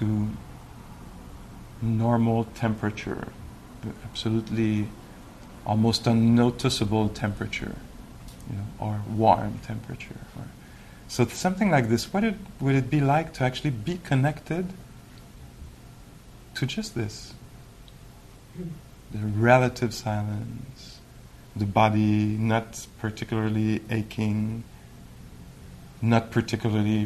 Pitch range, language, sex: 105-125 Hz, English, male